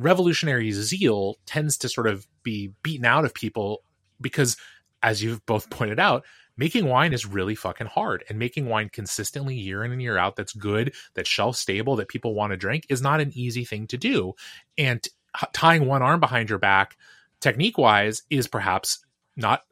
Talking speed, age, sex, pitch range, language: 185 wpm, 20-39, male, 105-145 Hz, English